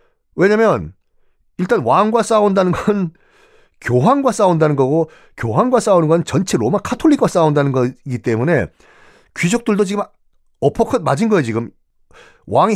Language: Korean